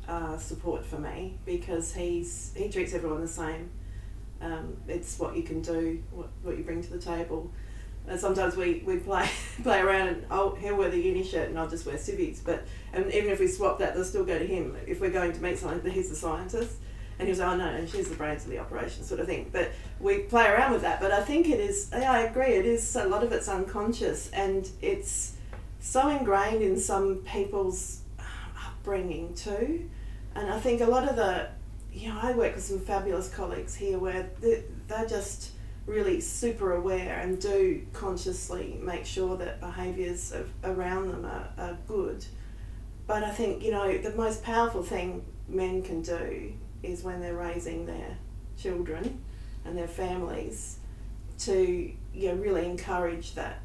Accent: Australian